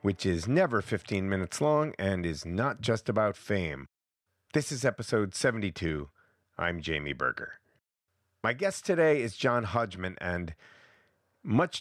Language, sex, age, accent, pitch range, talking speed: English, male, 40-59, American, 85-115 Hz, 135 wpm